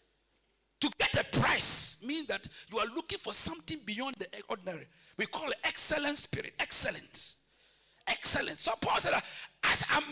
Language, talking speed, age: English, 160 wpm, 50-69